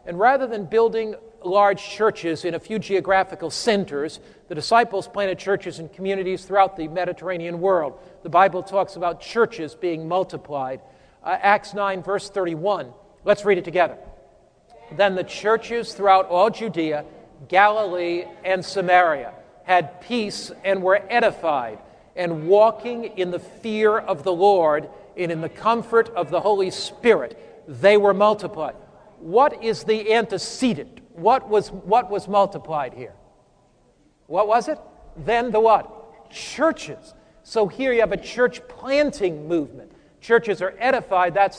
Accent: American